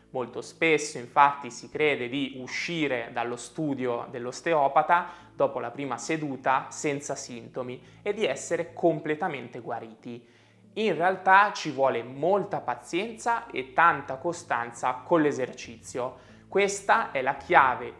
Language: Italian